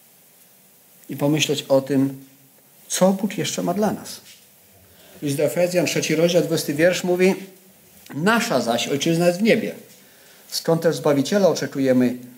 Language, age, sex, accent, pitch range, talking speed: Polish, 50-69, male, native, 145-220 Hz, 125 wpm